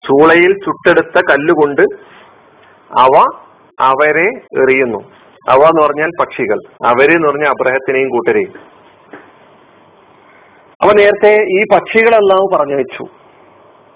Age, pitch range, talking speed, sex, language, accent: 40-59, 150-215 Hz, 90 wpm, male, Malayalam, native